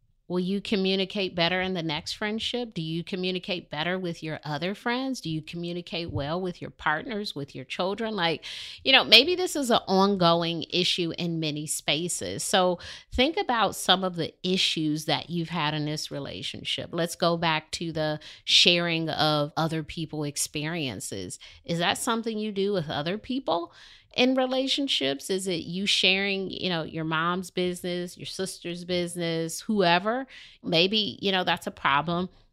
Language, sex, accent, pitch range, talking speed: English, female, American, 160-190 Hz, 165 wpm